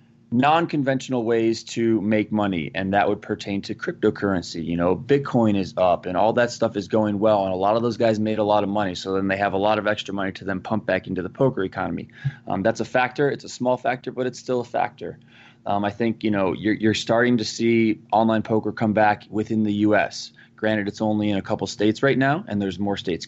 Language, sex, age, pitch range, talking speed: English, male, 20-39, 100-115 Hz, 240 wpm